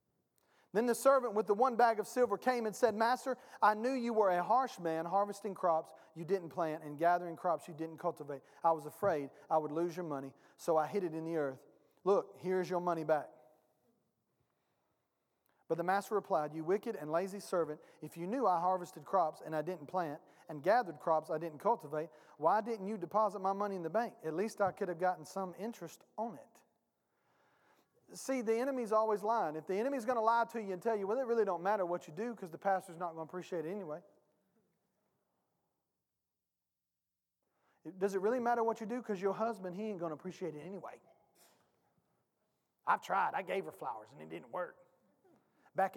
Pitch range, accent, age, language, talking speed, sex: 165-225 Hz, American, 40-59, English, 205 wpm, male